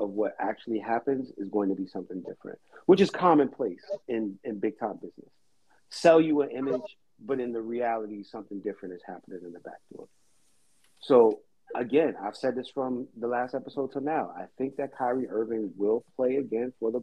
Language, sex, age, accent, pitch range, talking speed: English, male, 40-59, American, 110-135 Hz, 195 wpm